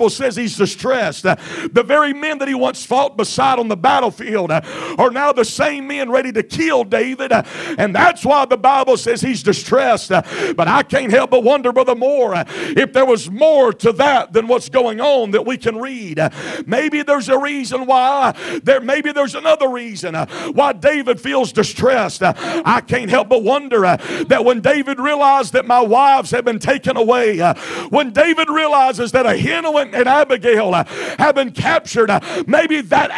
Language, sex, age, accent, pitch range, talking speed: English, male, 50-69, American, 235-290 Hz, 180 wpm